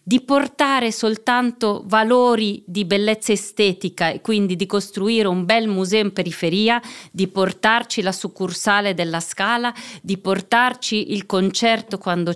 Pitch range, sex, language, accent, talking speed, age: 190-235 Hz, female, Italian, native, 130 wpm, 40-59